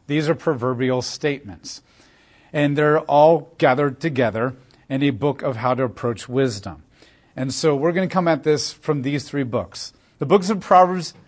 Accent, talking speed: American, 175 wpm